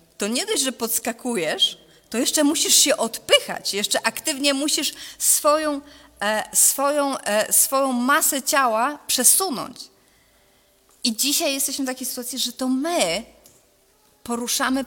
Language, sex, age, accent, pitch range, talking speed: Polish, female, 30-49, native, 230-285 Hz, 115 wpm